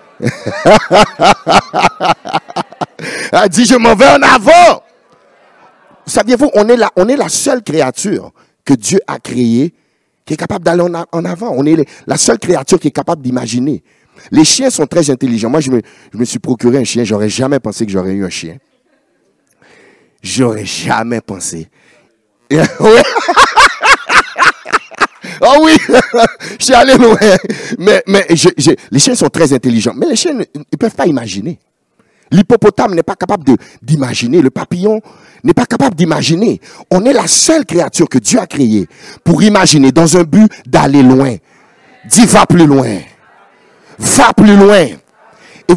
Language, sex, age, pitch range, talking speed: French, male, 50-69, 135-215 Hz, 155 wpm